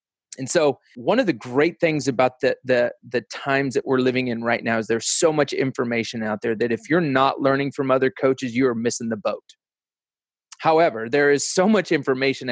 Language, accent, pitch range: English, American, 130-150 Hz